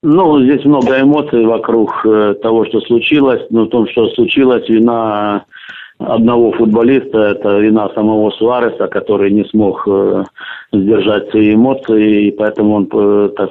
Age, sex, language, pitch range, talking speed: 50-69, male, Russian, 105-120 Hz, 135 wpm